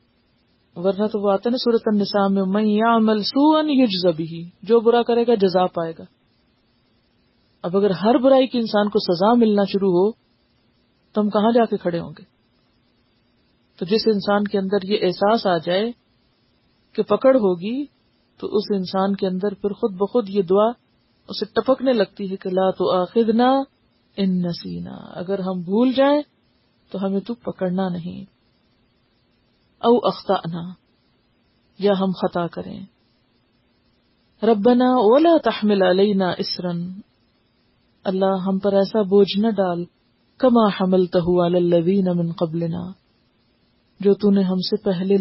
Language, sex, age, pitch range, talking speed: Urdu, female, 40-59, 180-215 Hz, 130 wpm